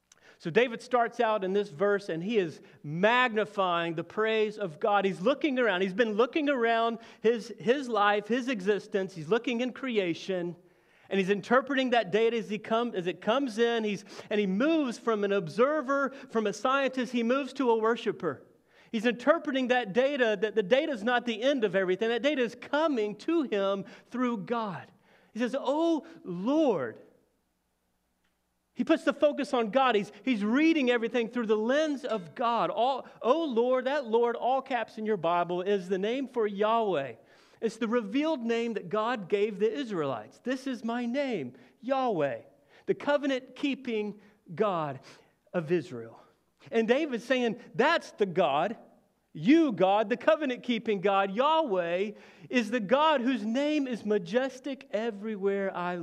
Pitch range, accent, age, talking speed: 200-255 Hz, American, 40-59, 165 wpm